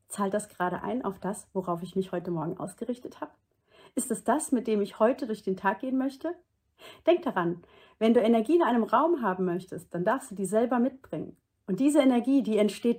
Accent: German